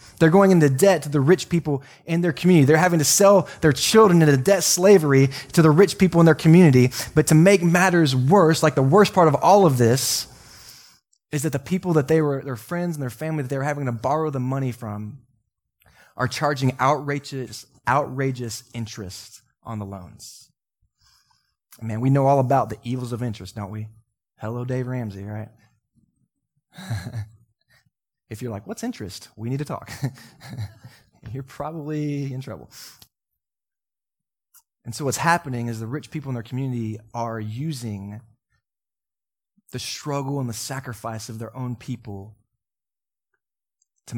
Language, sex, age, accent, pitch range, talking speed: English, male, 20-39, American, 115-155 Hz, 165 wpm